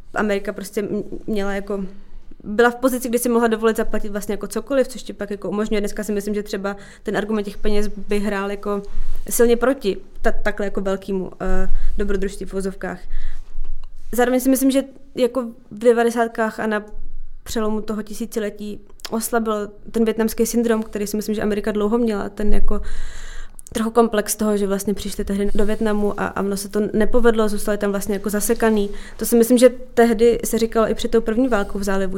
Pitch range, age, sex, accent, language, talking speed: 200-230 Hz, 20-39, female, native, Czech, 185 wpm